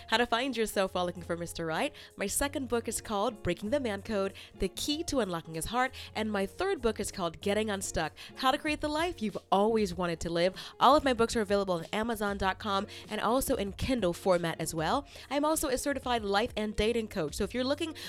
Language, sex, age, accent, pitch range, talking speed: English, female, 30-49, American, 190-255 Hz, 230 wpm